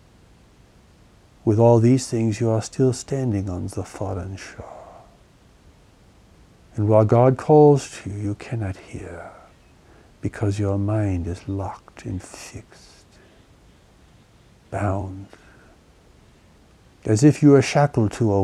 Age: 60-79